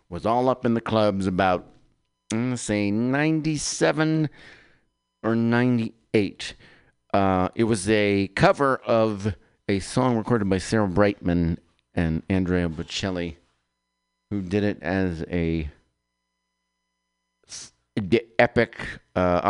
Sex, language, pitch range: male, English, 90-115 Hz